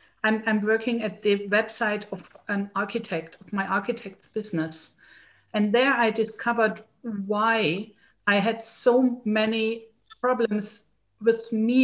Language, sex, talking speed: English, female, 120 wpm